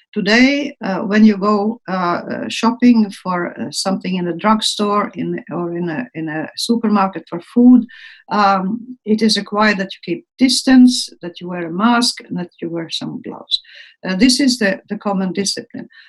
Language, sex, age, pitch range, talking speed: English, female, 50-69, 210-260 Hz, 180 wpm